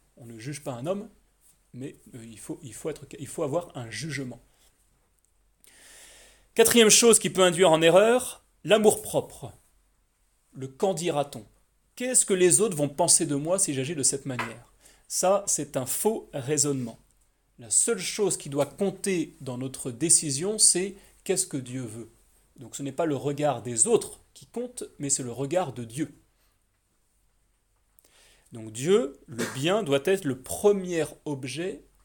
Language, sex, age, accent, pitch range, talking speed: French, male, 30-49, French, 125-180 Hz, 155 wpm